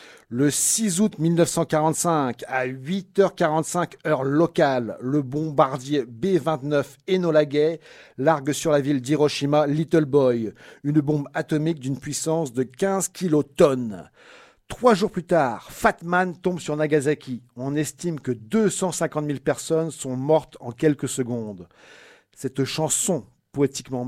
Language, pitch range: French, 135-170 Hz